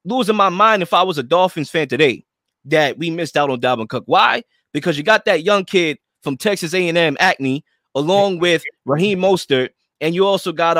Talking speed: 200 wpm